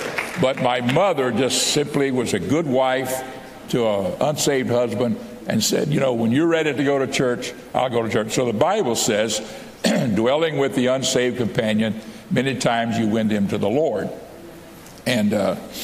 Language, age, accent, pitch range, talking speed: English, 60-79, American, 110-135 Hz, 180 wpm